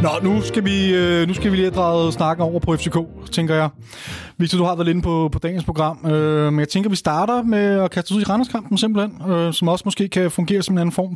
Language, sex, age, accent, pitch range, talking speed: Danish, male, 30-49, native, 160-200 Hz, 260 wpm